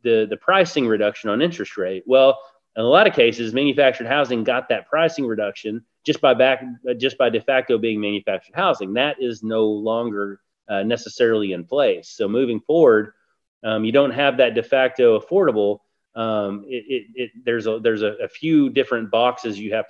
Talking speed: 185 wpm